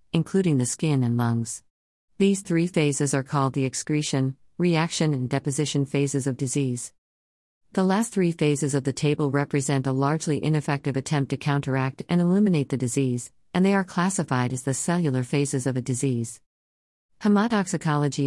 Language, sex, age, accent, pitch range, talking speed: English, female, 50-69, American, 130-155 Hz, 160 wpm